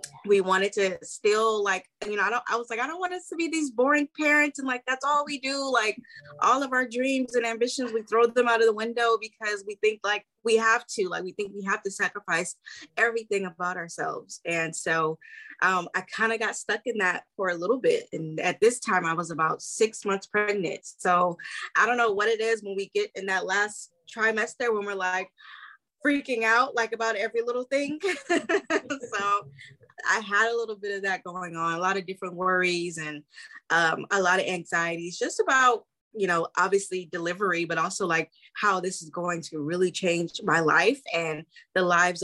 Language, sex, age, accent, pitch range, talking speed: English, female, 20-39, American, 175-230 Hz, 210 wpm